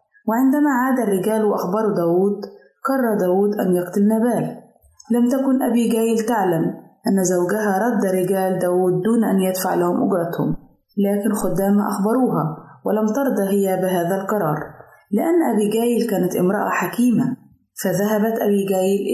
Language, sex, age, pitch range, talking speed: Arabic, female, 20-39, 180-225 Hz, 120 wpm